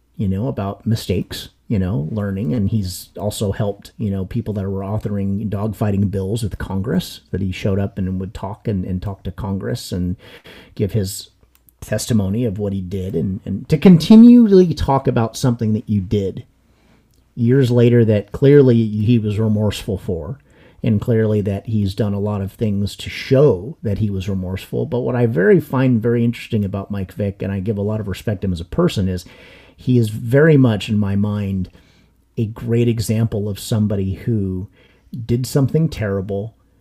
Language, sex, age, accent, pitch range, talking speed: English, male, 40-59, American, 95-120 Hz, 185 wpm